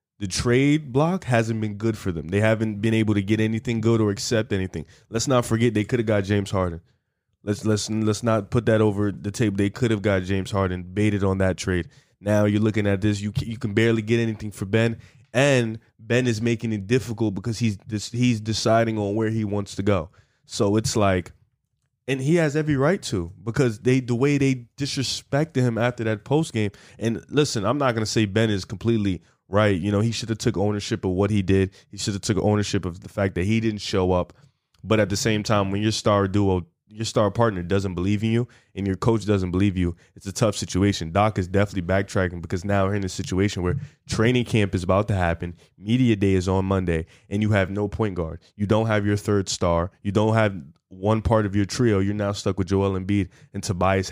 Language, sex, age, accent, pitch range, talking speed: English, male, 20-39, American, 100-115 Hz, 230 wpm